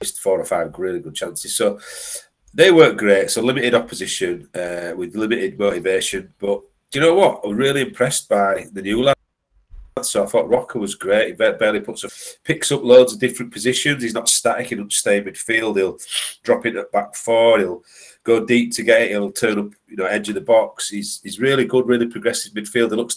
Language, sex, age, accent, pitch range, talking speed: English, male, 30-49, British, 105-135 Hz, 205 wpm